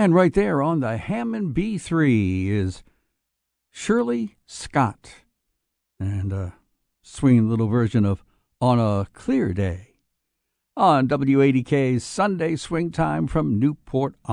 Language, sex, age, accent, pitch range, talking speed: English, male, 60-79, American, 105-145 Hz, 115 wpm